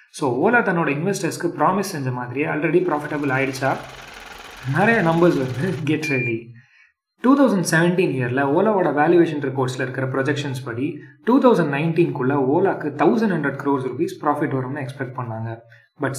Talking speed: 155 wpm